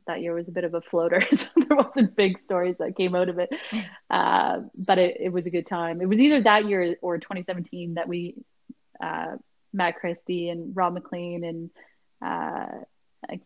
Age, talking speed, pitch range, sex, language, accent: 20-39, 190 wpm, 175-195 Hz, female, English, American